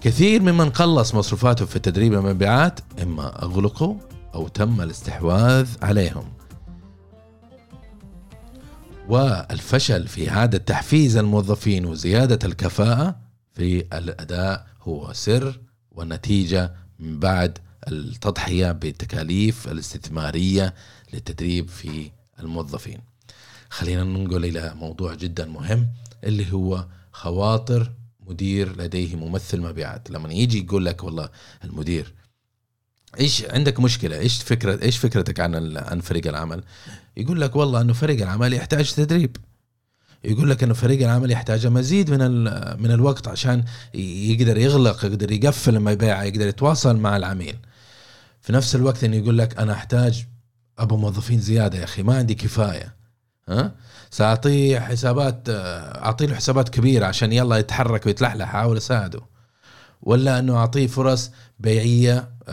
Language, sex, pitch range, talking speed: Arabic, male, 95-120 Hz, 120 wpm